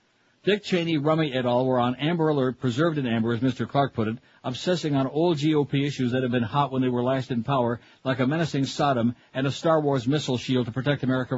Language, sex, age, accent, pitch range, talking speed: English, male, 60-79, American, 125-150 Hz, 235 wpm